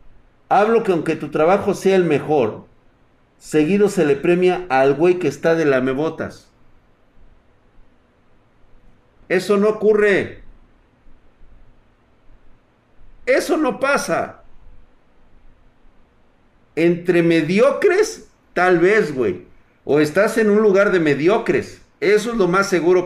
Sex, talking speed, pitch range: male, 110 wpm, 140-190 Hz